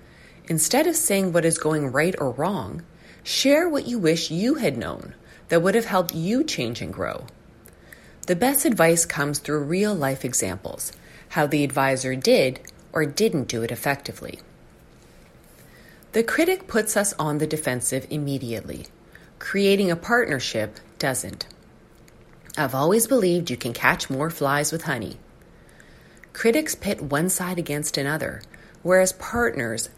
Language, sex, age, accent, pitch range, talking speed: English, female, 30-49, American, 130-200 Hz, 140 wpm